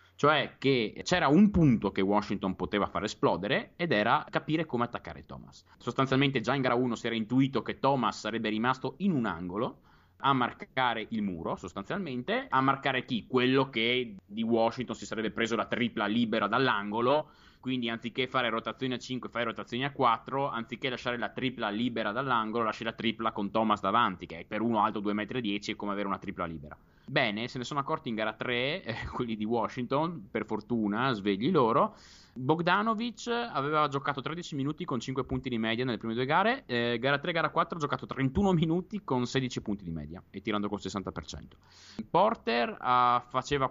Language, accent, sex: Italian, native, male